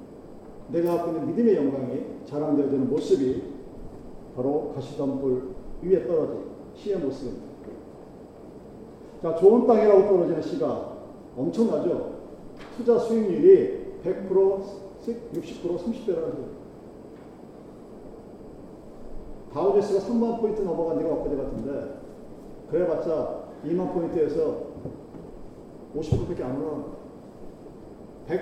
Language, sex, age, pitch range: Korean, male, 40-59, 170-245 Hz